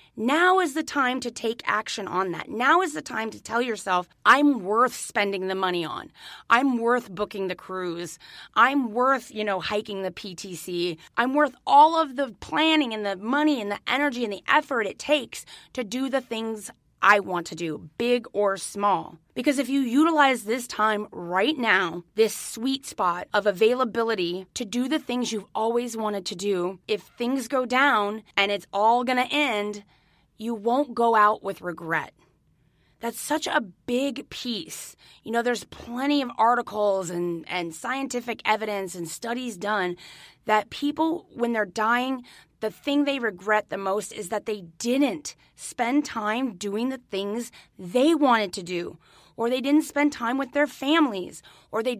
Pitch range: 205-270 Hz